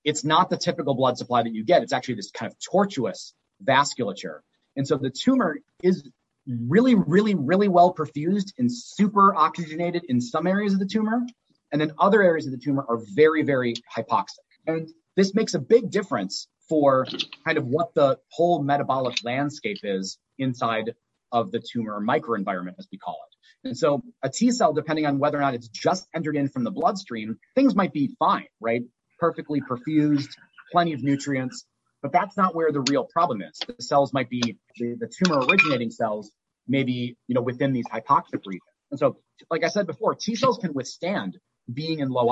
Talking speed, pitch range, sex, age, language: 190 wpm, 125-175 Hz, male, 30-49, English